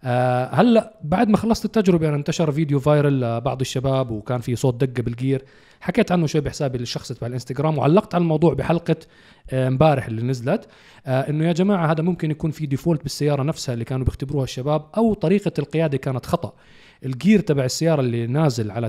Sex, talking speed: male, 185 wpm